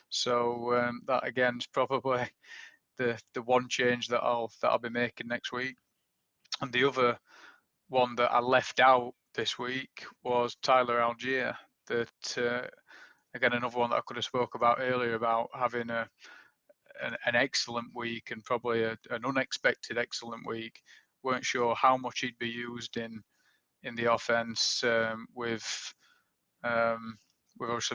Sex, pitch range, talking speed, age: male, 115-125 Hz, 155 wpm, 20-39